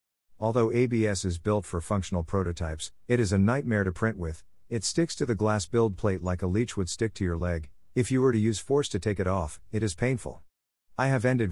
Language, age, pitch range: English, 50-69, 85-115 Hz